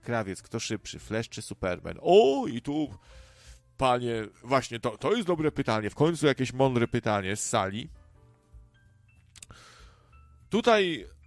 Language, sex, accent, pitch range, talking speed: Polish, male, native, 95-130 Hz, 130 wpm